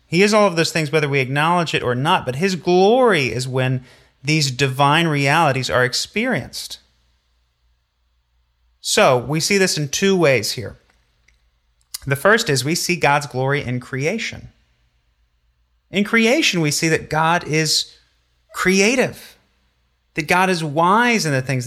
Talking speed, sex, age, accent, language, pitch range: 150 wpm, male, 30-49, American, English, 115-165 Hz